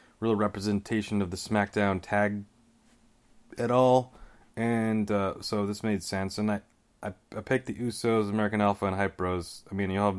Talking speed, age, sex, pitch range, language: 175 wpm, 30-49, male, 100-120 Hz, English